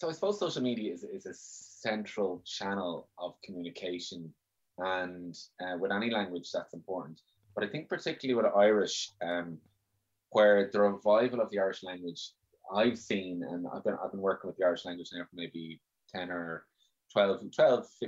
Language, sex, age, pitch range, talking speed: English, male, 20-39, 90-110 Hz, 175 wpm